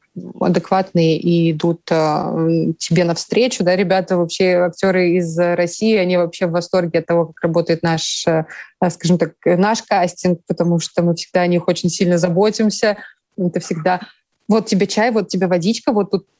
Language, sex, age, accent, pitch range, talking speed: Russian, female, 20-39, native, 180-215 Hz, 165 wpm